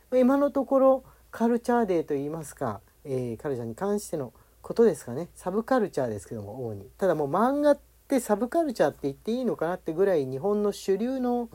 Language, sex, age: Japanese, male, 40-59